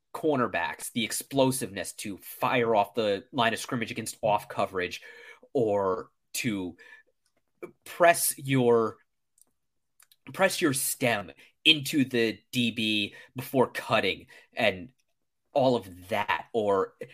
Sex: male